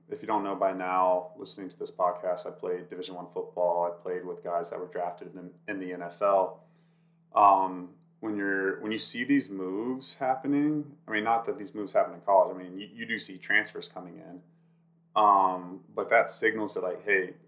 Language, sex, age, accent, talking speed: English, male, 30-49, American, 205 wpm